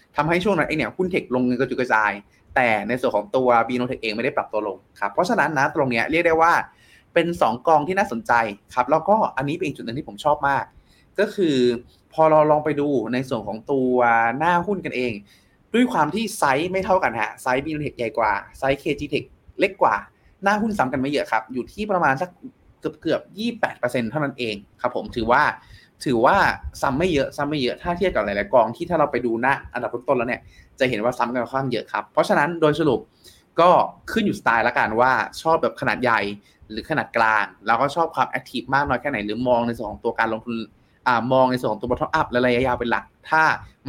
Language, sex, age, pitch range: Thai, male, 20-39, 115-155 Hz